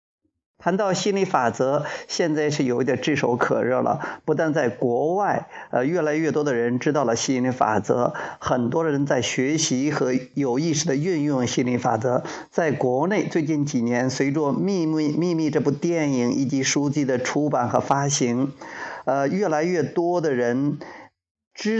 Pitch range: 130-170 Hz